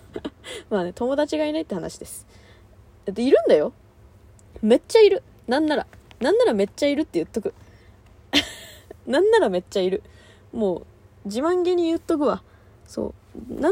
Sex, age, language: female, 20-39, Japanese